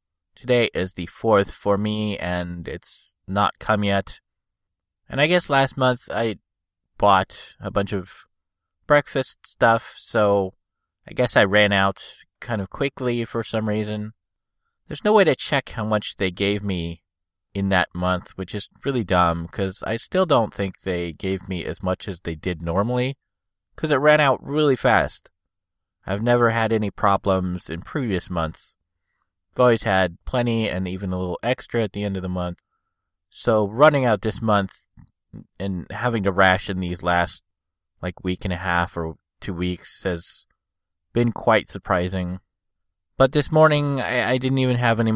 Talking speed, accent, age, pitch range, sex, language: 170 wpm, American, 20-39, 90-115 Hz, male, English